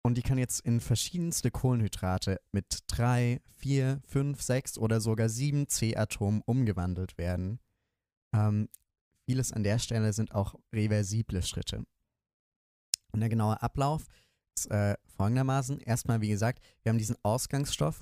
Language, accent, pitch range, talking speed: German, German, 100-125 Hz, 135 wpm